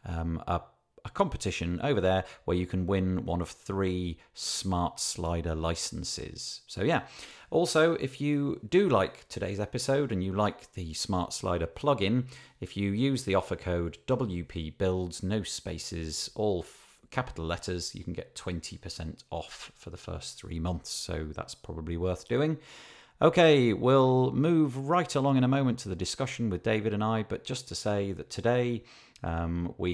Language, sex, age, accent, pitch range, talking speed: English, male, 40-59, British, 85-120 Hz, 165 wpm